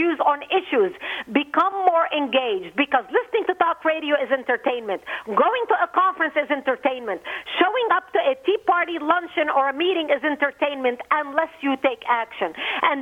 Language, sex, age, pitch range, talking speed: English, female, 50-69, 270-345 Hz, 160 wpm